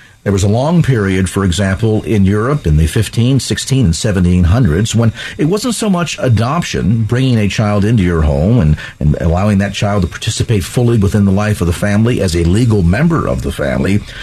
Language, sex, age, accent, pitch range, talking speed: English, male, 50-69, American, 100-140 Hz, 200 wpm